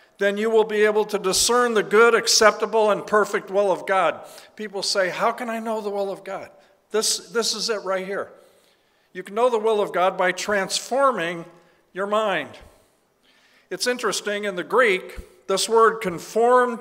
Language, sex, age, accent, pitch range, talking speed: English, male, 50-69, American, 190-225 Hz, 180 wpm